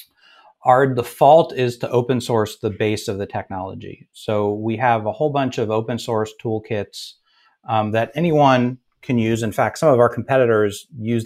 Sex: male